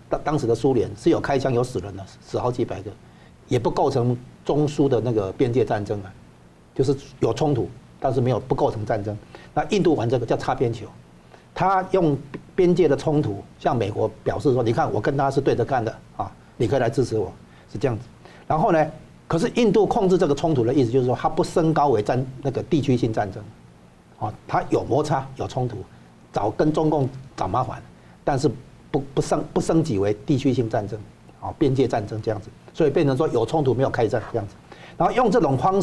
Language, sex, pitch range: Chinese, male, 110-145 Hz